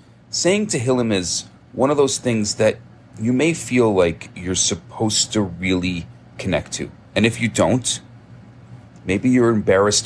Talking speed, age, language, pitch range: 150 wpm, 40-59, English, 100-120 Hz